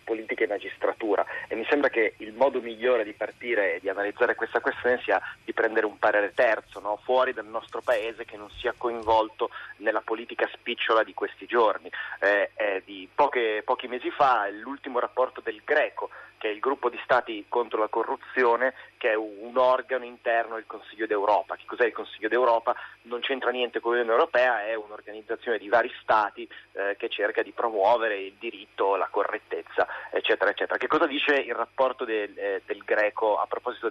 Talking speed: 185 wpm